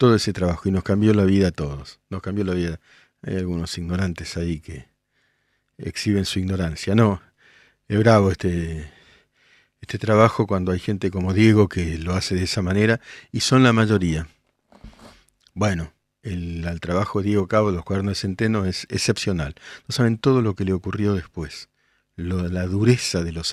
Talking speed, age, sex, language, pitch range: 180 wpm, 50-69, male, Spanish, 90-110 Hz